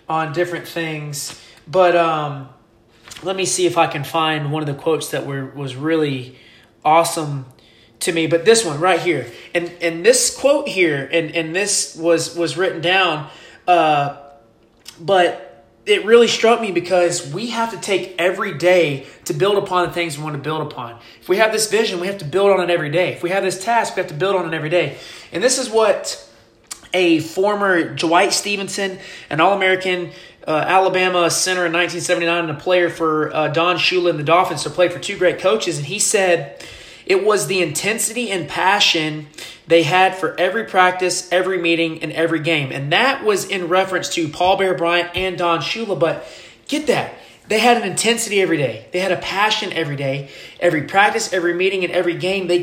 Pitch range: 160-190 Hz